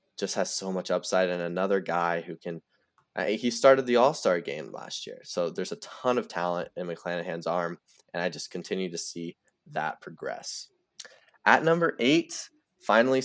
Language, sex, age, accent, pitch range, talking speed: English, male, 10-29, American, 95-125 Hz, 175 wpm